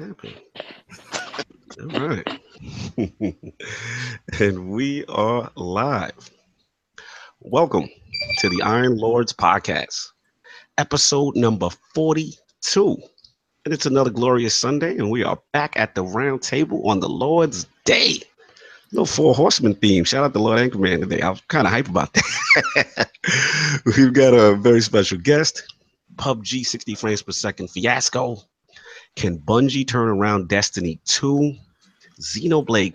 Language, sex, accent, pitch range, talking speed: English, male, American, 95-130 Hz, 125 wpm